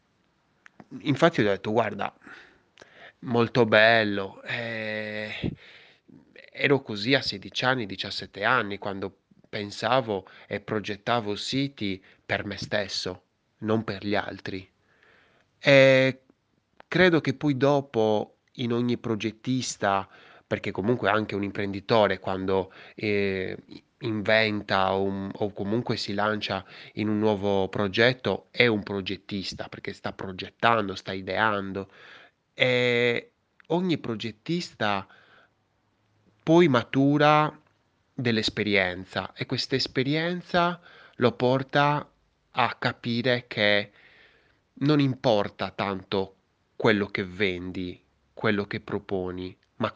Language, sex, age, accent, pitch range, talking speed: Italian, male, 20-39, native, 100-120 Hz, 100 wpm